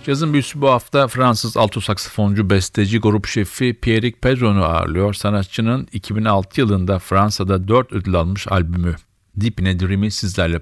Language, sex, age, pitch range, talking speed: Turkish, male, 50-69, 95-115 Hz, 135 wpm